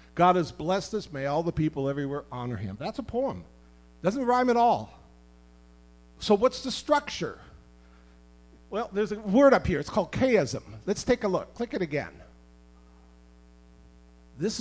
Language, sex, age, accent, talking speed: English, male, 50-69, American, 160 wpm